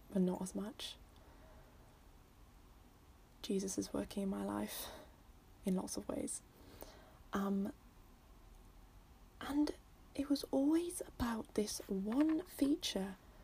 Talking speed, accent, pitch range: 105 wpm, British, 185-235 Hz